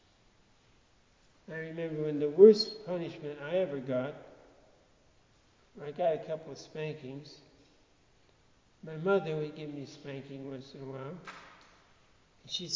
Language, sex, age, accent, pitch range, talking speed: English, male, 60-79, American, 145-190 Hz, 125 wpm